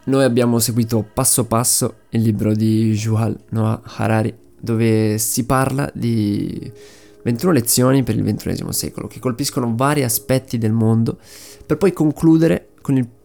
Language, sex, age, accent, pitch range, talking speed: Italian, male, 20-39, native, 105-130 Hz, 145 wpm